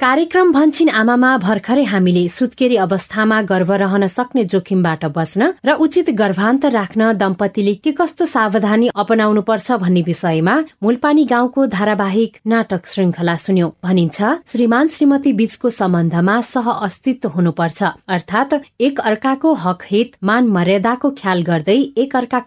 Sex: female